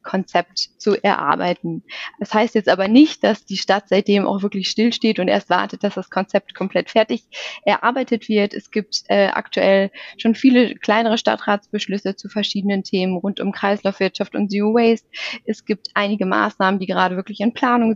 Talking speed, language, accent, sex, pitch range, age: 170 wpm, German, German, female, 185-220 Hz, 20-39